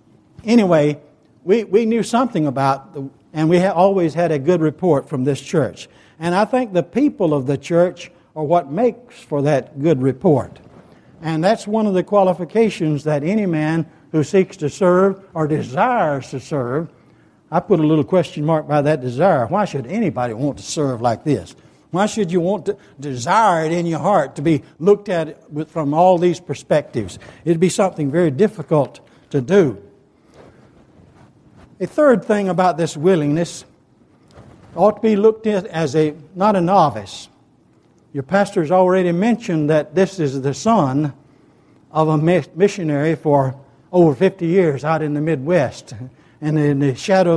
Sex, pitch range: male, 145-190 Hz